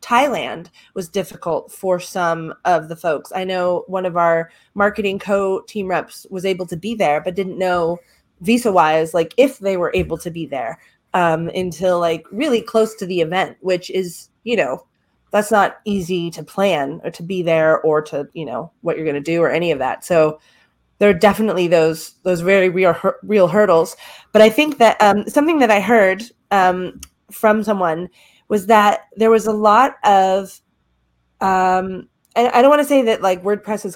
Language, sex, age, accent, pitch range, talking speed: English, female, 30-49, American, 175-210 Hz, 185 wpm